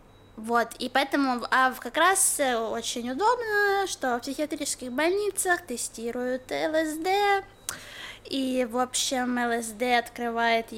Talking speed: 100 wpm